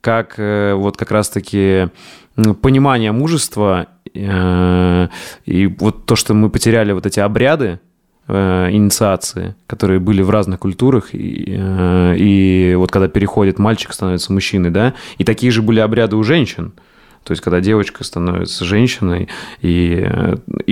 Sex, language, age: male, Russian, 20-39